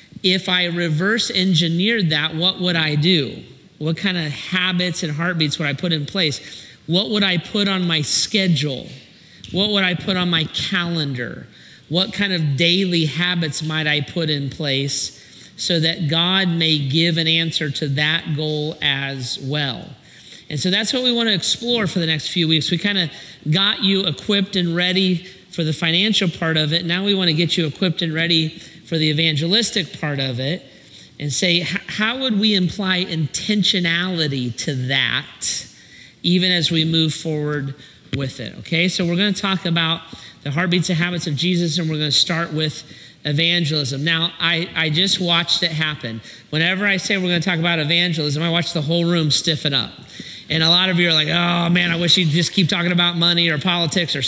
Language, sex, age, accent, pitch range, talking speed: English, male, 40-59, American, 155-180 Hz, 190 wpm